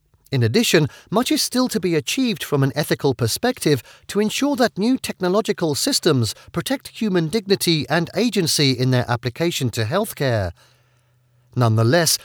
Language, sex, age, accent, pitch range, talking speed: English, male, 40-59, British, 125-205 Hz, 140 wpm